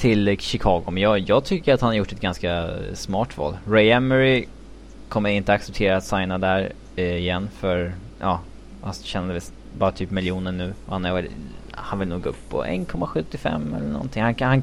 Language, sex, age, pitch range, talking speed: Swedish, male, 20-39, 90-105 Hz, 195 wpm